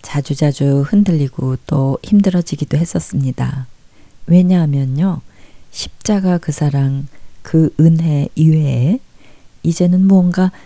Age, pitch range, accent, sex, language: 40-59, 135-175 Hz, native, female, Korean